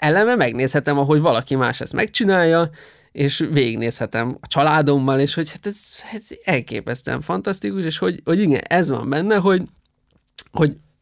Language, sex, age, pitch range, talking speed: Hungarian, male, 20-39, 120-155 Hz, 145 wpm